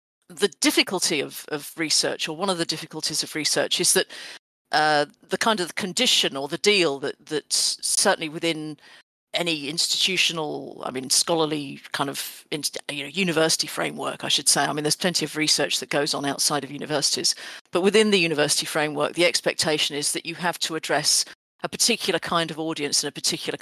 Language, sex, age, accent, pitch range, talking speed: Swedish, female, 50-69, British, 150-185 Hz, 190 wpm